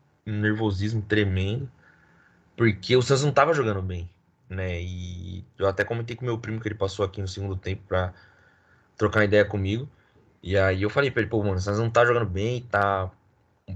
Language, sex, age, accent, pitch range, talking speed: Portuguese, male, 20-39, Brazilian, 95-130 Hz, 200 wpm